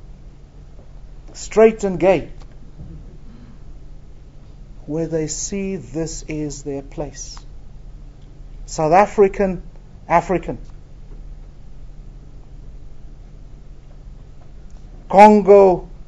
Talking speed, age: 50 wpm, 50-69